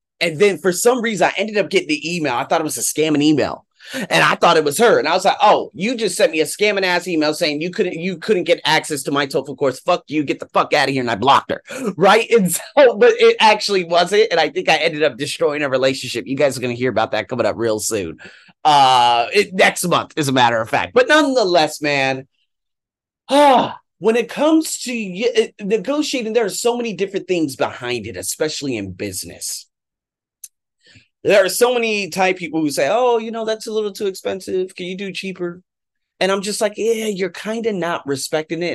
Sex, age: male, 30-49